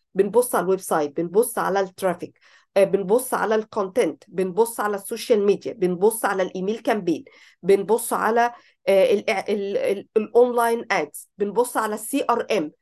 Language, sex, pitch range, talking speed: Arabic, female, 200-250 Hz, 125 wpm